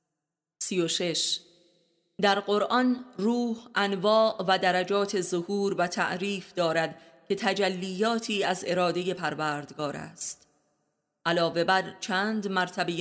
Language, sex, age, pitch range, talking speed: Persian, female, 30-49, 165-195 Hz, 95 wpm